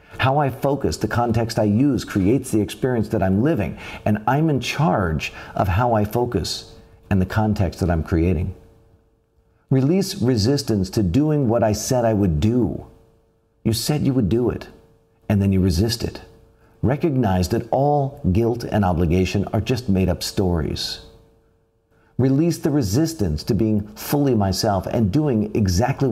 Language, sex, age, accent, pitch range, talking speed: English, male, 50-69, American, 95-130 Hz, 160 wpm